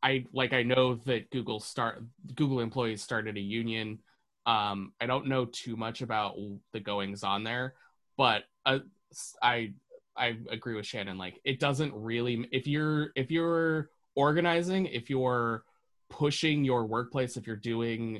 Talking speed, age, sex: 155 wpm, 20-39, male